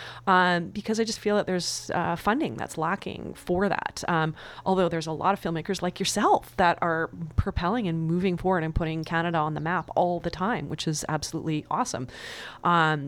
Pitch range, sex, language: 155-190 Hz, female, English